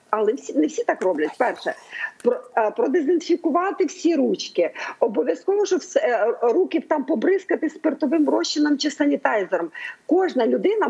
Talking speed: 130 wpm